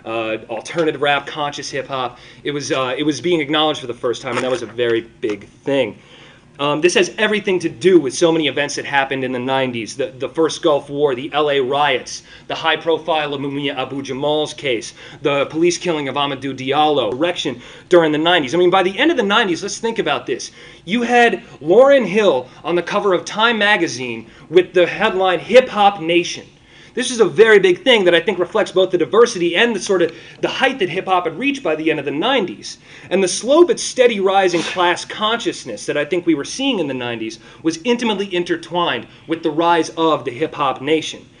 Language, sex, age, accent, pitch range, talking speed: English, male, 30-49, American, 140-185 Hz, 215 wpm